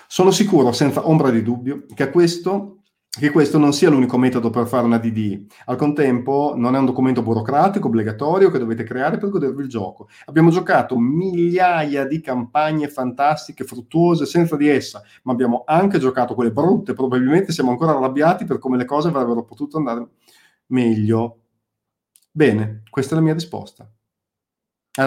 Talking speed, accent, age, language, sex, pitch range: 160 wpm, native, 30-49, Italian, male, 115-150 Hz